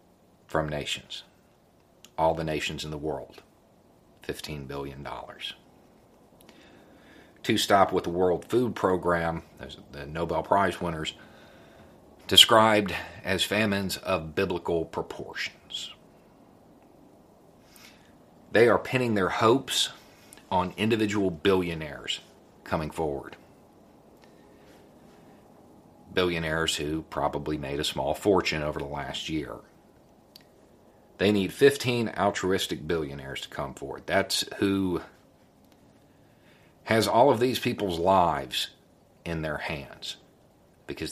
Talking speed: 100 wpm